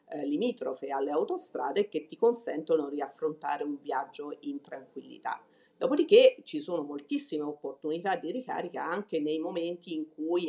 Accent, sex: native, female